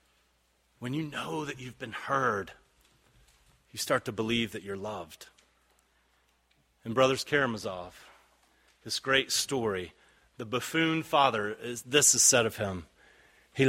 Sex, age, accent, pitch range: male, 30-49, American, 110-160 Hz